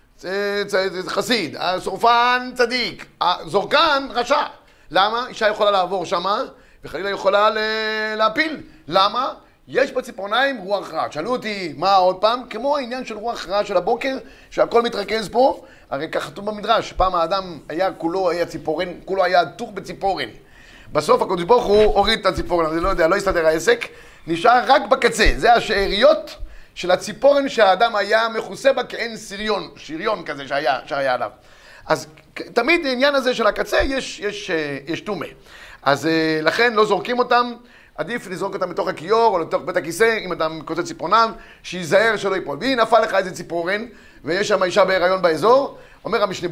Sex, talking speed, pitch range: male, 160 wpm, 185-245 Hz